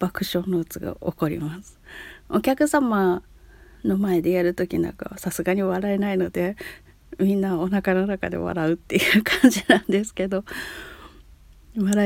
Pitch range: 165-220 Hz